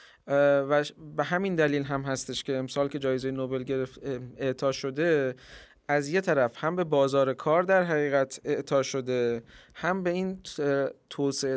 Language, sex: Persian, male